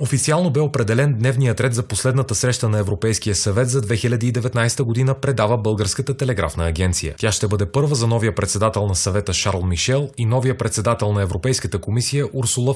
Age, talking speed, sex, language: 30-49, 170 wpm, male, Bulgarian